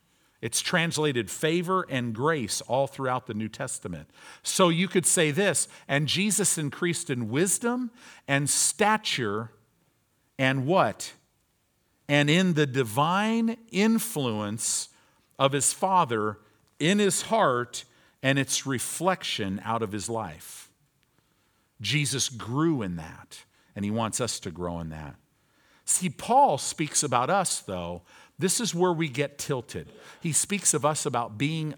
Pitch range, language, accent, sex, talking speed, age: 115-170 Hz, English, American, male, 135 wpm, 50-69